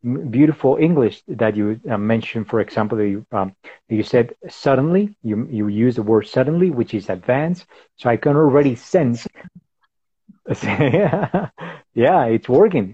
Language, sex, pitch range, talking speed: English, male, 115-150 Hz, 150 wpm